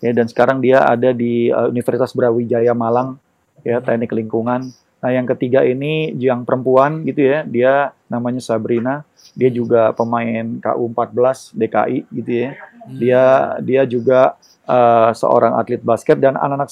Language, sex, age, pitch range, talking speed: Indonesian, male, 30-49, 120-145 Hz, 145 wpm